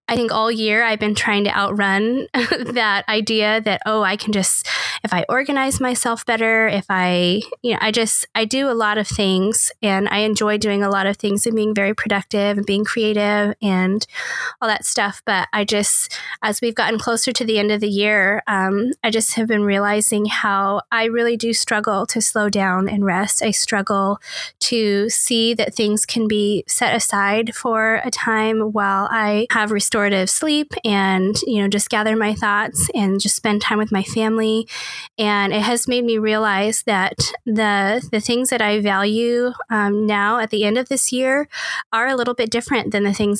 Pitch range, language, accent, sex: 205-230 Hz, English, American, female